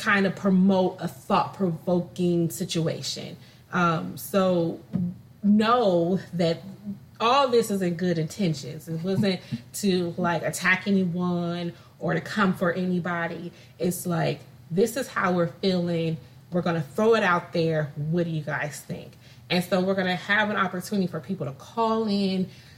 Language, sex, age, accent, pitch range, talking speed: English, female, 30-49, American, 165-195 Hz, 150 wpm